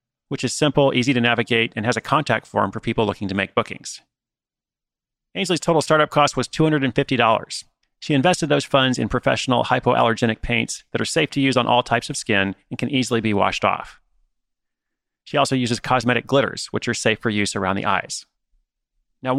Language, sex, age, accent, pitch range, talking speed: English, male, 30-49, American, 115-140 Hz, 190 wpm